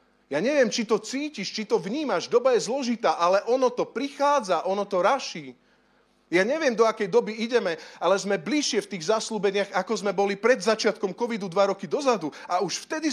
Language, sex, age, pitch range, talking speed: Slovak, male, 30-49, 185-225 Hz, 190 wpm